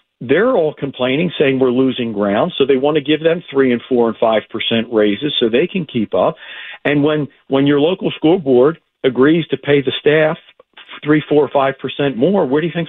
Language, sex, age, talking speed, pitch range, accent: English, male, 50-69, 220 wpm, 120-155 Hz, American